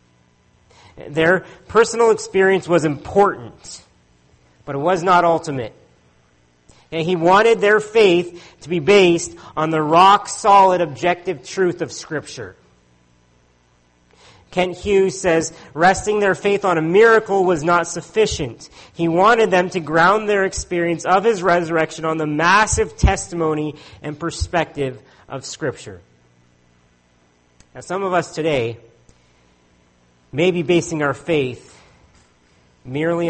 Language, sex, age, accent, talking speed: English, male, 40-59, American, 115 wpm